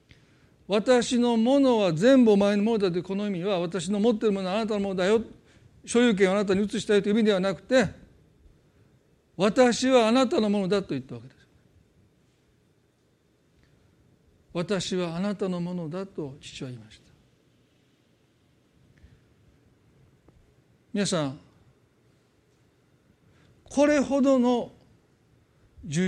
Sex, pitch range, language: male, 175-235 Hz, Japanese